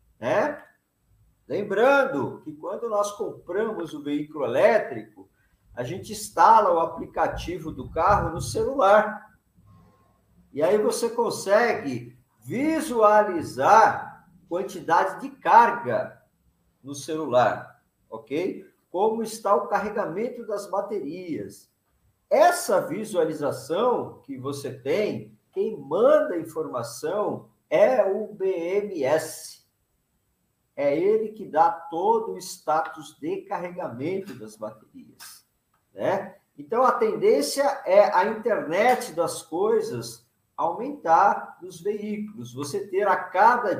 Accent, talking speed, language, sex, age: Brazilian, 100 wpm, Portuguese, male, 50-69